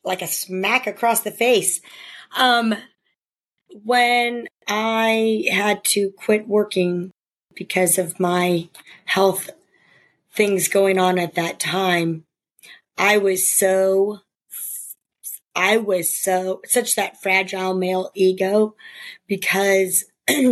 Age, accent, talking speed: 40-59, American, 100 wpm